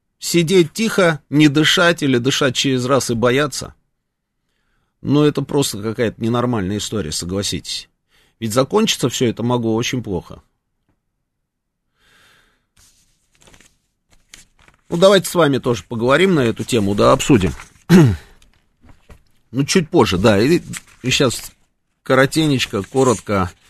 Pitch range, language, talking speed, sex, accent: 105-135 Hz, Russian, 105 wpm, male, native